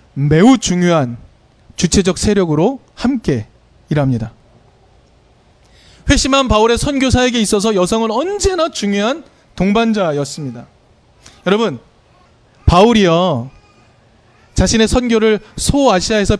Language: Korean